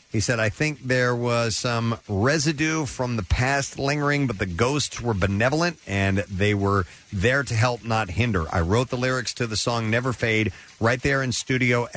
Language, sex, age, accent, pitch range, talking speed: English, male, 40-59, American, 95-120 Hz, 190 wpm